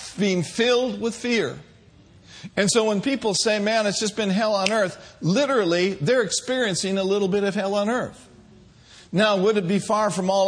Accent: American